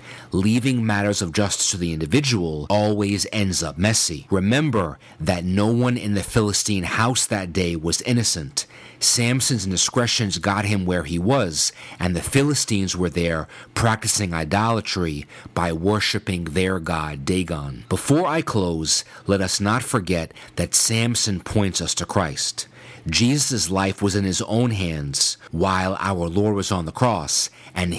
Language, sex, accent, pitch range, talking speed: English, male, American, 85-110 Hz, 150 wpm